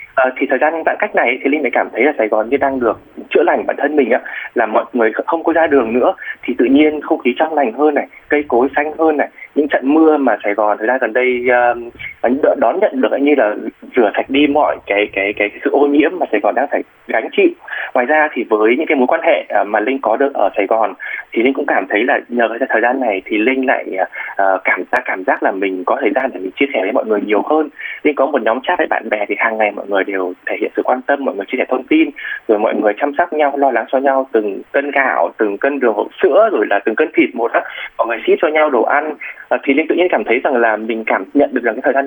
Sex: male